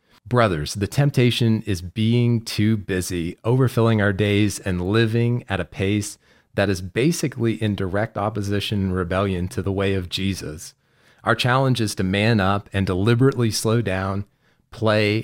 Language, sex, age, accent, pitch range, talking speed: English, male, 40-59, American, 95-110 Hz, 155 wpm